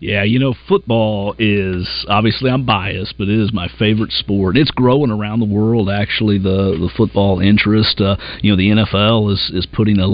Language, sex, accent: English, male, American